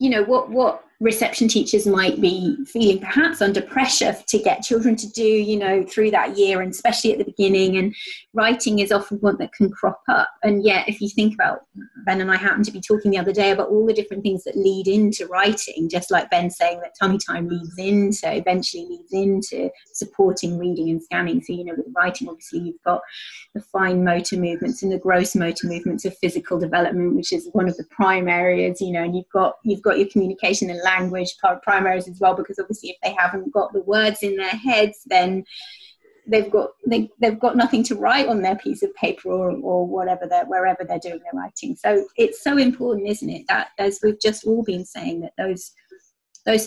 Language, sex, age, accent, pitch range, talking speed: English, female, 30-49, British, 185-230 Hz, 220 wpm